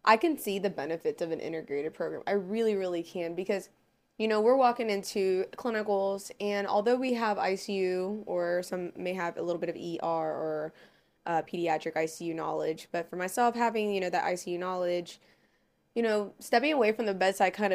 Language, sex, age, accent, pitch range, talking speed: English, female, 20-39, American, 175-210 Hz, 190 wpm